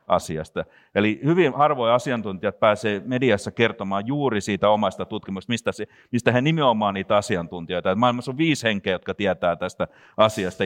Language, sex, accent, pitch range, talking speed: Finnish, male, native, 95-130 Hz, 145 wpm